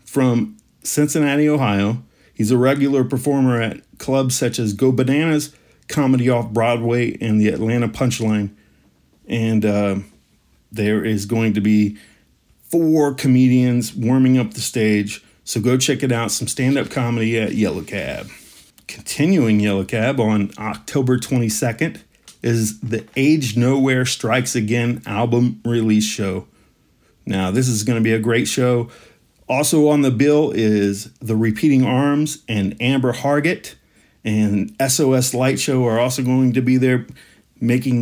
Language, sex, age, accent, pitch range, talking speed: English, male, 40-59, American, 110-130 Hz, 140 wpm